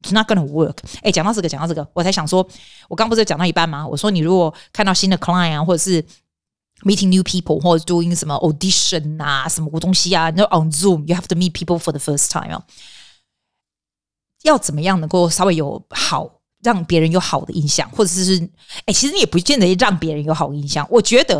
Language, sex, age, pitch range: Chinese, female, 30-49, 165-210 Hz